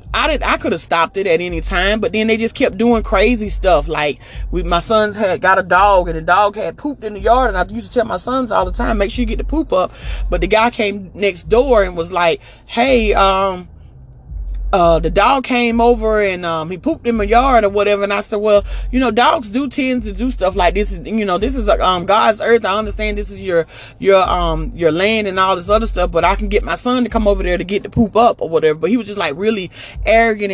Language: English